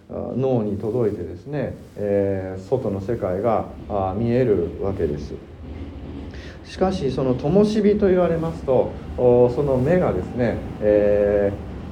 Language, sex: Japanese, male